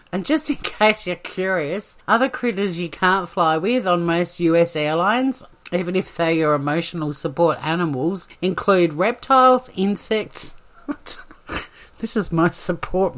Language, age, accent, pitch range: English, 50-69, Australian, 160-210 Hz